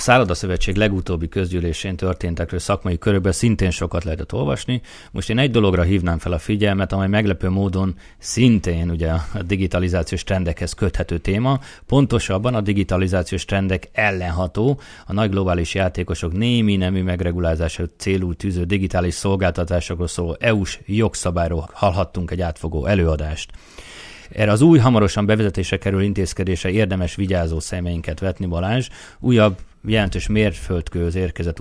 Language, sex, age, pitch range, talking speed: Hungarian, male, 30-49, 90-100 Hz, 125 wpm